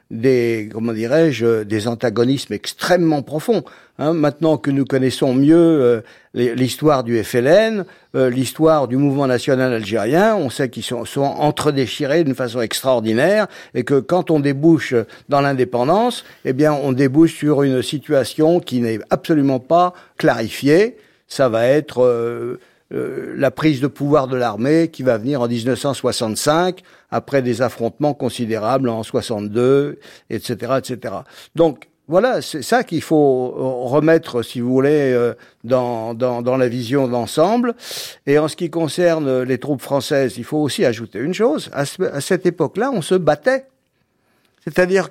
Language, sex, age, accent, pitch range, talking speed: French, male, 50-69, French, 125-165 Hz, 150 wpm